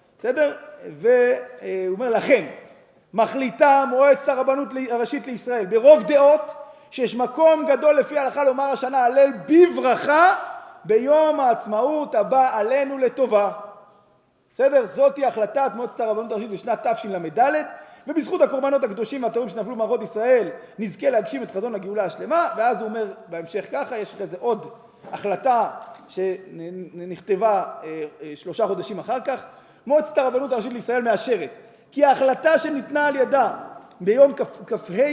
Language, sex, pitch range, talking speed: Hebrew, male, 215-290 Hz, 125 wpm